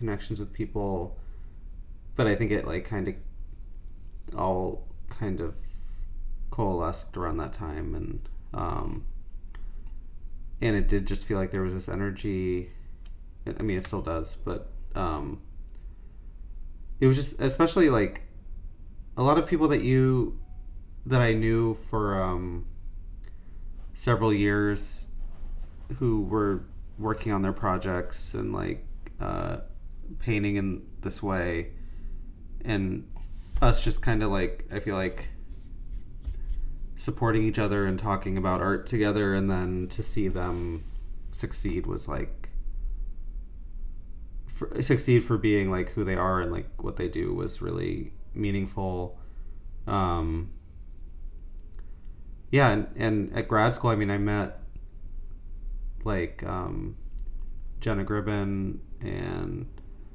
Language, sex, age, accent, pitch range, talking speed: English, male, 30-49, American, 80-105 Hz, 125 wpm